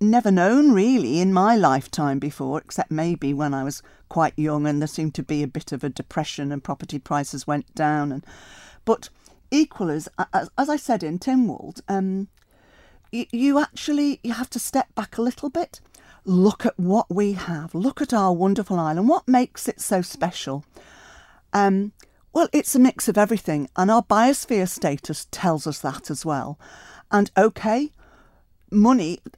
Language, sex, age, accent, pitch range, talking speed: English, female, 50-69, British, 160-235 Hz, 170 wpm